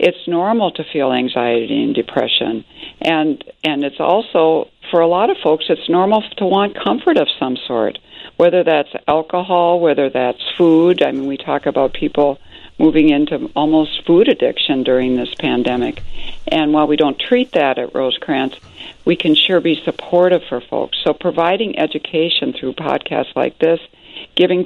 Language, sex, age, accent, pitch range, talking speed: English, female, 60-79, American, 140-175 Hz, 165 wpm